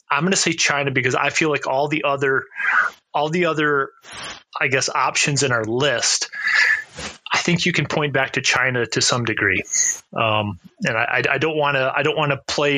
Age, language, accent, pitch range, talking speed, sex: 30-49, English, American, 120-140 Hz, 200 wpm, male